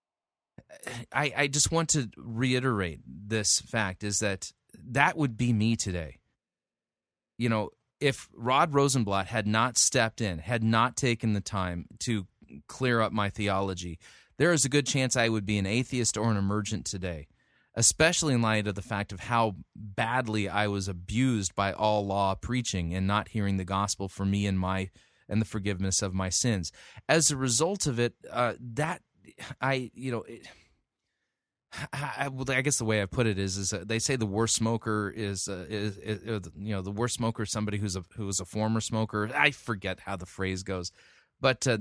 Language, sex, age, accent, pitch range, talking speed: English, male, 30-49, American, 100-130 Hz, 190 wpm